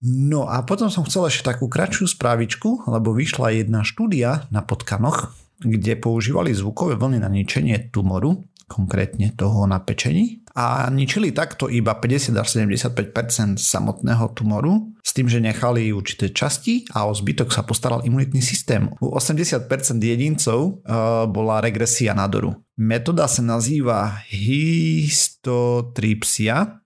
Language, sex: Slovak, male